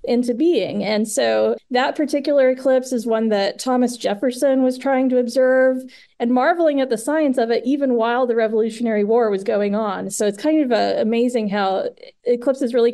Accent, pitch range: American, 215-260 Hz